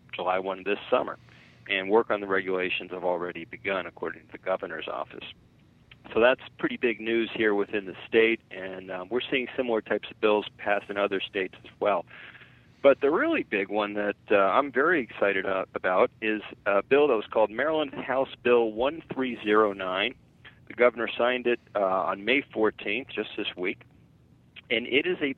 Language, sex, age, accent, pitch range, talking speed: English, male, 40-59, American, 100-120 Hz, 180 wpm